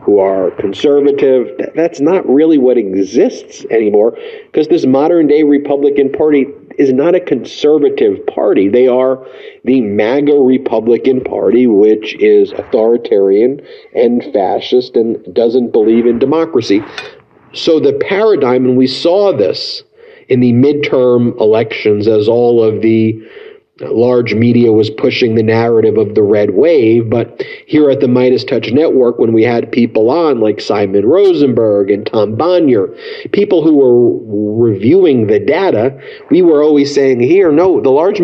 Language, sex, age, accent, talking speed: English, male, 40-59, American, 145 wpm